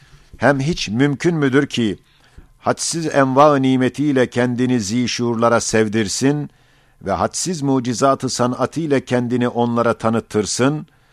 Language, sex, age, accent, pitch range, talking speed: Turkish, male, 50-69, native, 115-135 Hz, 100 wpm